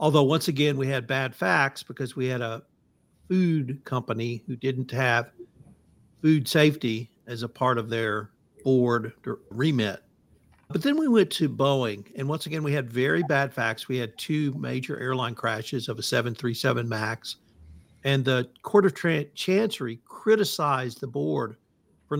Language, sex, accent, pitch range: English, male, American, 120-150 Hz